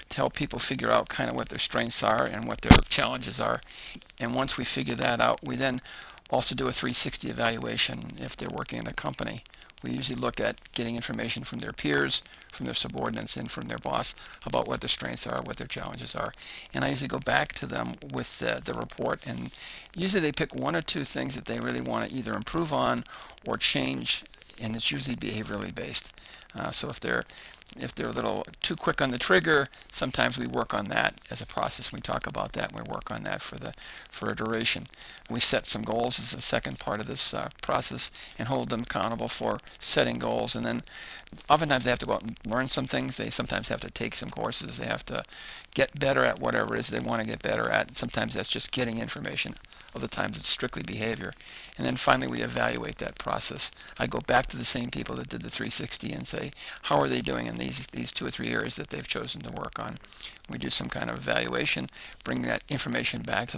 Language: English